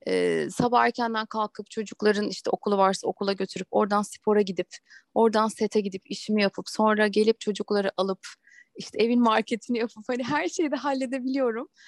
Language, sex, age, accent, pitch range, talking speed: Turkish, female, 30-49, native, 195-260 Hz, 155 wpm